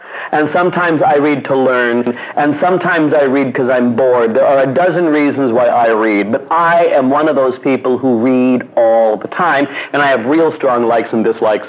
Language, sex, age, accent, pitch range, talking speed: English, male, 40-59, American, 130-185 Hz, 210 wpm